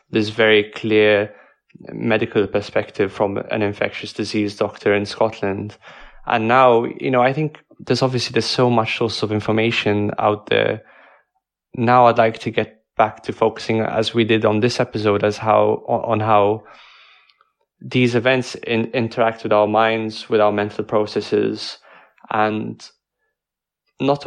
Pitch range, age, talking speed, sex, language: 105-115 Hz, 20-39, 145 wpm, male, English